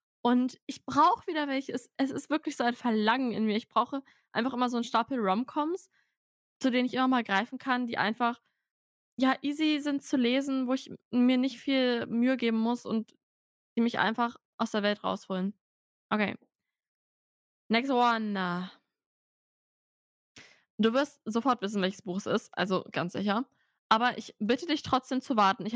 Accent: German